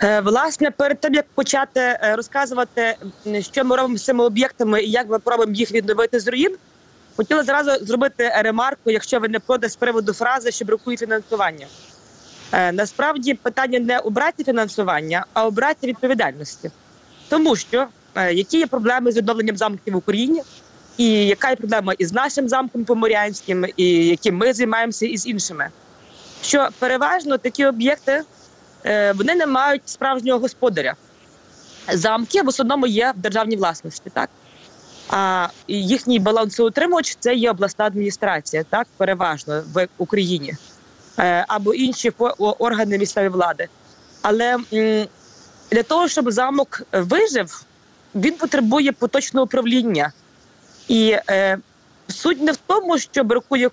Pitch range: 210-265 Hz